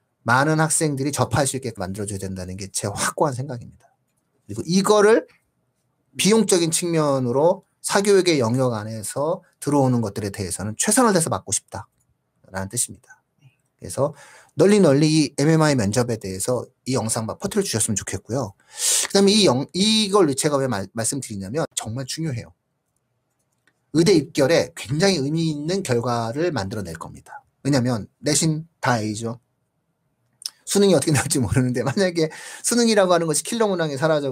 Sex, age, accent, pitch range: male, 40-59, native, 115-160 Hz